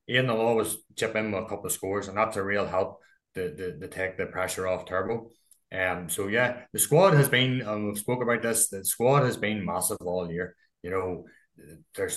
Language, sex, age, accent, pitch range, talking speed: English, male, 20-39, Irish, 90-100 Hz, 220 wpm